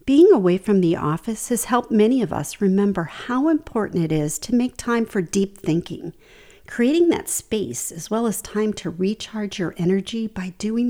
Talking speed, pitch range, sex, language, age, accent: 185 wpm, 180-245 Hz, female, English, 50-69, American